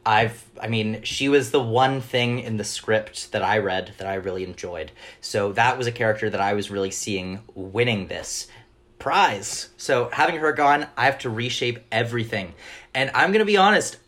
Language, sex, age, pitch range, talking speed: English, male, 30-49, 105-135 Hz, 195 wpm